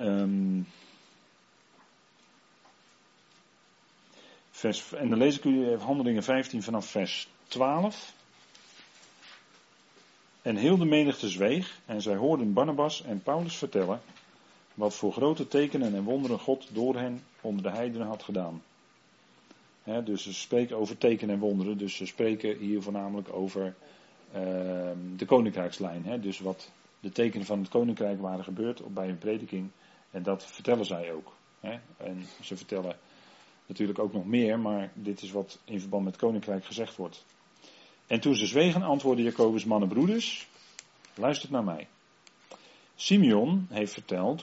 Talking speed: 135 wpm